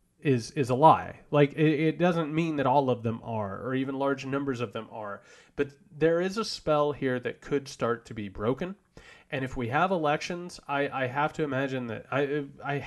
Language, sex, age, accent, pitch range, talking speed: English, male, 30-49, American, 110-140 Hz, 215 wpm